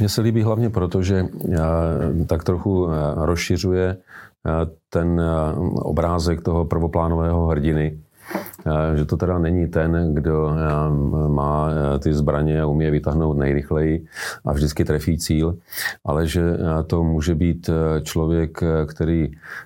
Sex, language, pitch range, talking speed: male, Czech, 80-85 Hz, 115 wpm